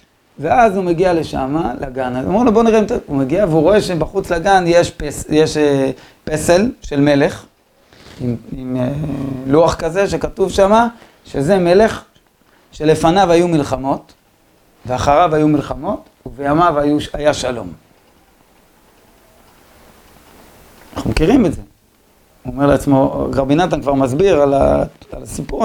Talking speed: 125 wpm